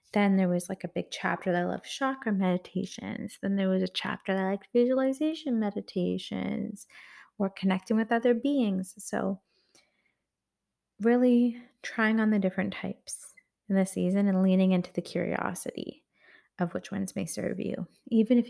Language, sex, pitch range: English, female, 185-235 Hz